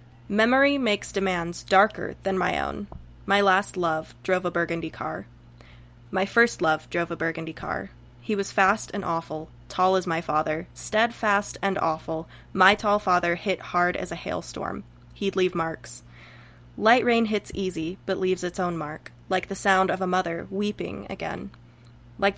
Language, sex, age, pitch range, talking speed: English, female, 20-39, 155-200 Hz, 165 wpm